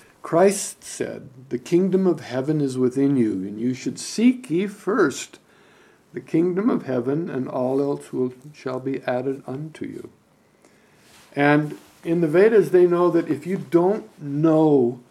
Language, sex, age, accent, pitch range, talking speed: English, male, 60-79, American, 130-195 Hz, 150 wpm